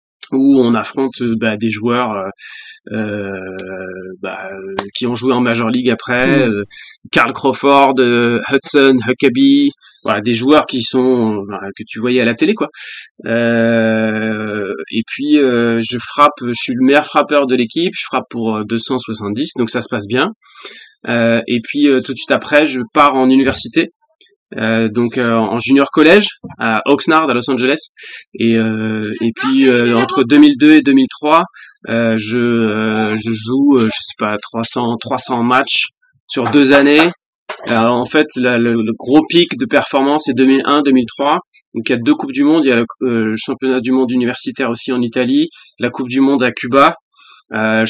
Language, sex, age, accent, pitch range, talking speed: French, male, 20-39, French, 115-145 Hz, 180 wpm